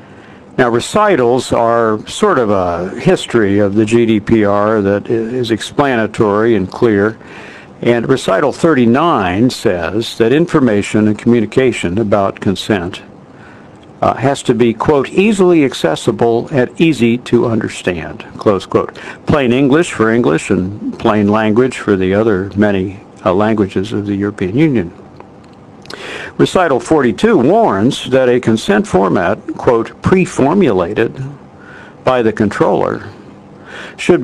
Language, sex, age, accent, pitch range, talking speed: English, male, 60-79, American, 105-130 Hz, 120 wpm